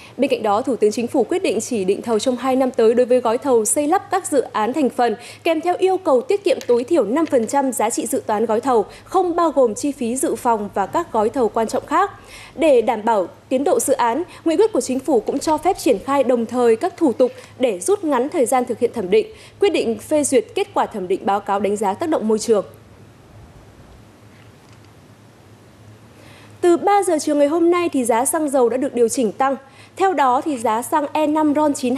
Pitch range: 235-320 Hz